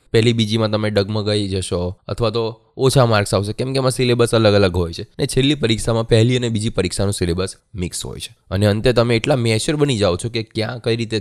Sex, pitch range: male, 95-120 Hz